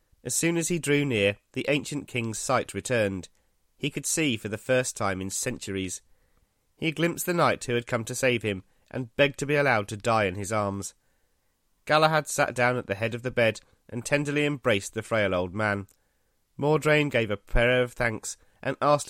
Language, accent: English, British